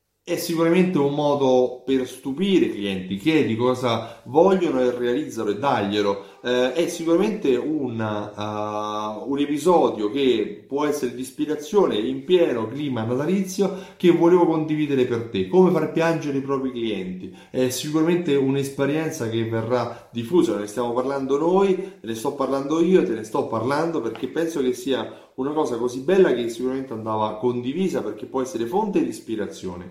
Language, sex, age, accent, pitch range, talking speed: Italian, male, 30-49, native, 115-165 Hz, 150 wpm